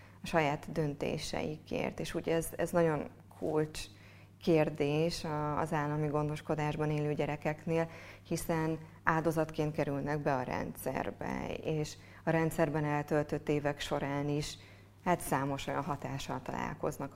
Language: Hungarian